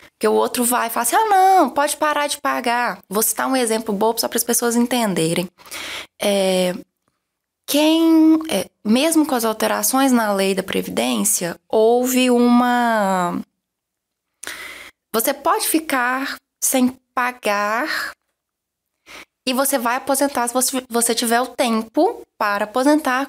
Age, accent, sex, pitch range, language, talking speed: 20-39, Brazilian, female, 215-275 Hz, Portuguese, 135 wpm